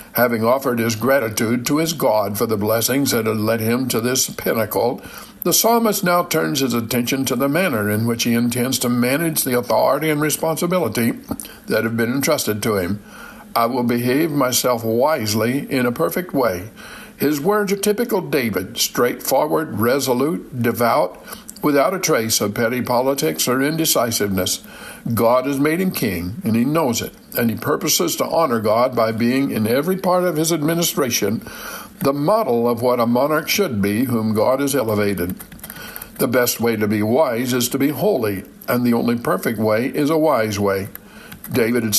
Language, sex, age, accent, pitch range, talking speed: English, male, 60-79, American, 115-155 Hz, 175 wpm